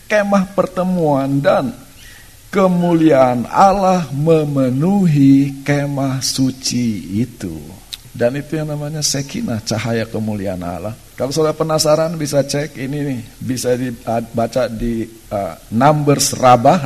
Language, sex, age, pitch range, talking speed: Indonesian, male, 50-69, 125-185 Hz, 105 wpm